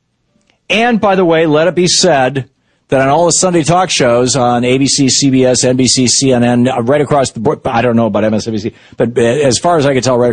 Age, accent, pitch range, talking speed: 50-69, American, 90-145 Hz, 205 wpm